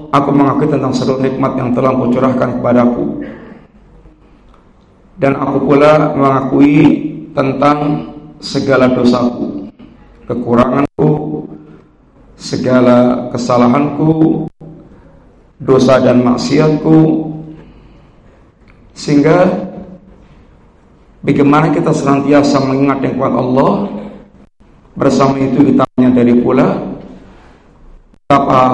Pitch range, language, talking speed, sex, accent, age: 125-145 Hz, Indonesian, 75 wpm, male, native, 50-69